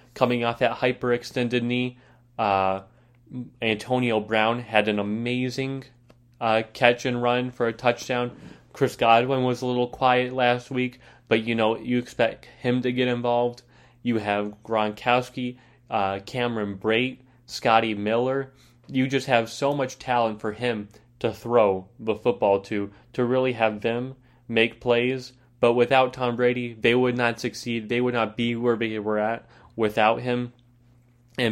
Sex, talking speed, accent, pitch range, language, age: male, 155 wpm, American, 115-125 Hz, English, 20-39